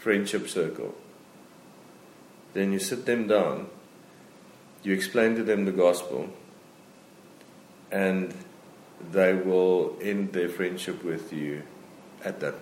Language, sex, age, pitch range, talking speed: English, male, 50-69, 90-110 Hz, 110 wpm